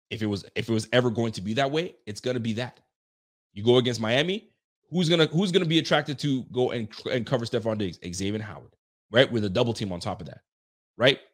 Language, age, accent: English, 30-49, American